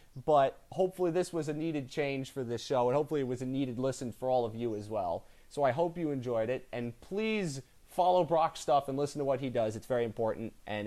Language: English